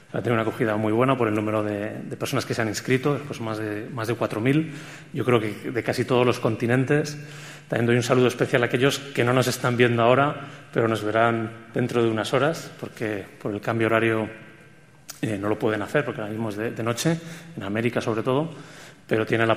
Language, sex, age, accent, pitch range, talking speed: Spanish, male, 30-49, Spanish, 110-145 Hz, 225 wpm